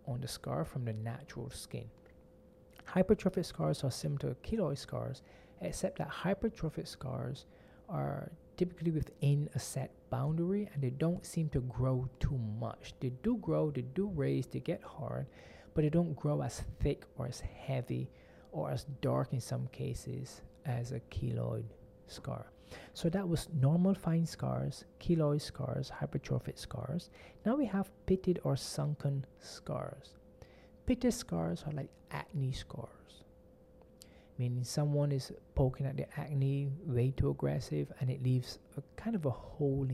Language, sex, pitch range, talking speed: English, male, 120-155 Hz, 150 wpm